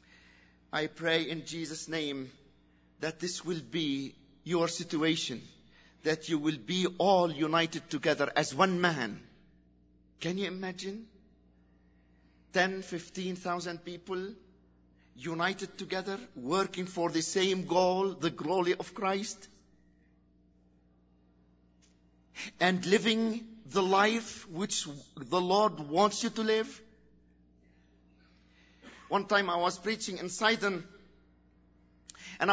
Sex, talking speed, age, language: male, 110 wpm, 50-69, English